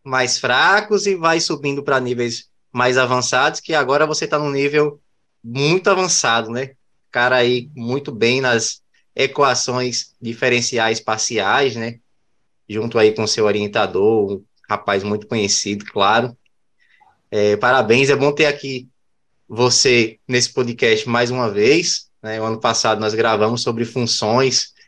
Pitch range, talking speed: 110-135 Hz, 140 wpm